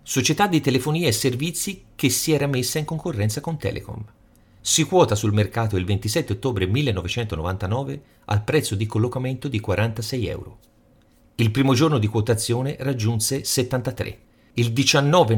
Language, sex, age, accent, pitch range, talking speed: Italian, male, 40-59, native, 105-140 Hz, 145 wpm